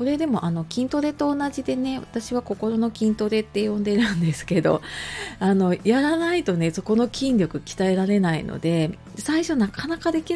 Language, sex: Japanese, female